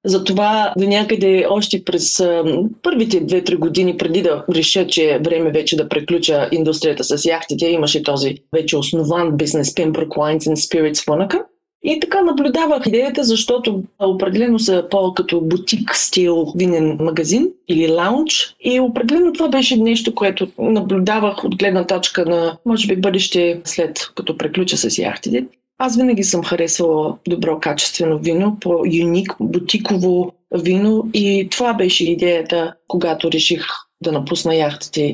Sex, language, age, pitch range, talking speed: female, Bulgarian, 30-49, 165-215 Hz, 140 wpm